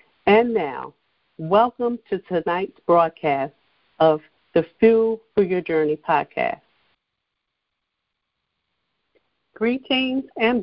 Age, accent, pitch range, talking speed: 50-69, American, 170-210 Hz, 85 wpm